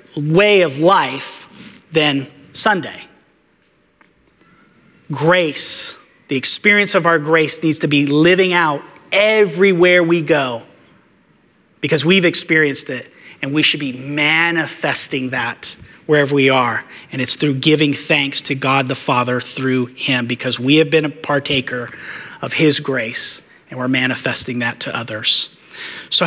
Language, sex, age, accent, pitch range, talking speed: English, male, 30-49, American, 135-175 Hz, 135 wpm